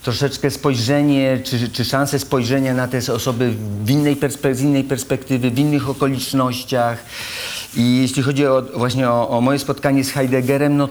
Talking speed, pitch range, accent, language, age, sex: 150 wpm, 120-140 Hz, native, Polish, 40-59, male